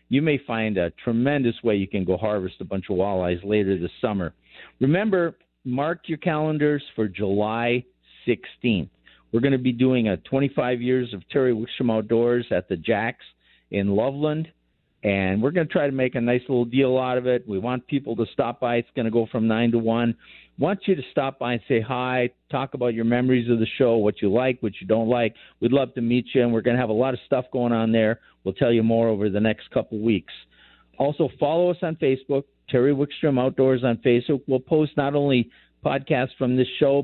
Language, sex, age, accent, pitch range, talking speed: English, male, 50-69, American, 115-140 Hz, 215 wpm